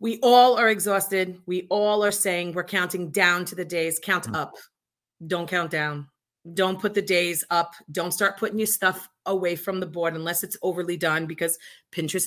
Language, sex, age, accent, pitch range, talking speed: English, female, 30-49, American, 165-205 Hz, 190 wpm